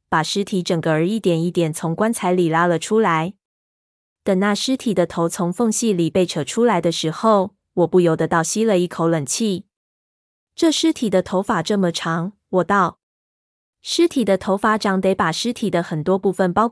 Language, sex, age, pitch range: Chinese, female, 20-39, 170-205 Hz